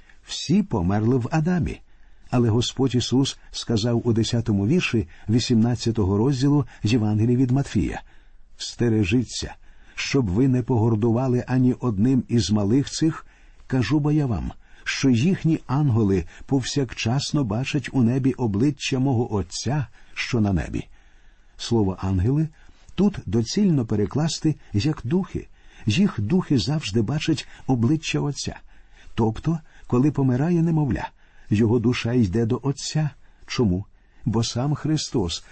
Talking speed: 115 wpm